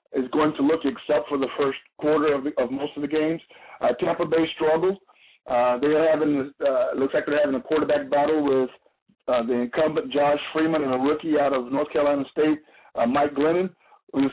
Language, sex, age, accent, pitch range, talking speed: English, male, 50-69, American, 145-170 Hz, 200 wpm